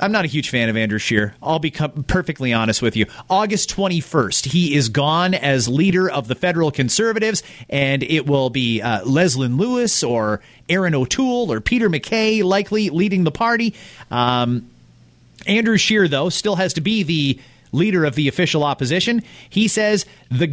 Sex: male